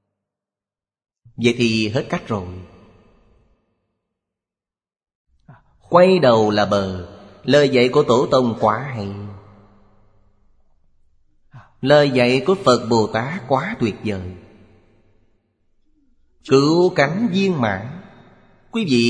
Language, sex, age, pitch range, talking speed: Vietnamese, male, 30-49, 100-130 Hz, 95 wpm